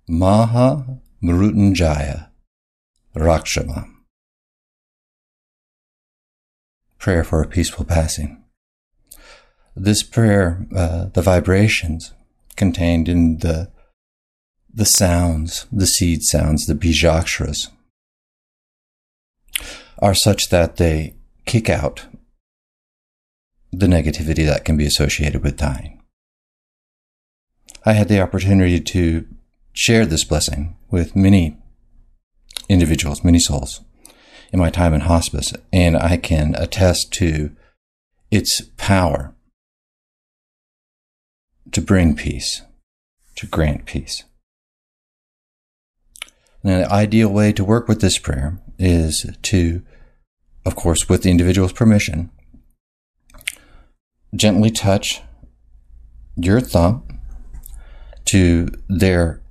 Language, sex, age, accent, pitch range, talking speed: English, male, 60-79, American, 75-100 Hz, 90 wpm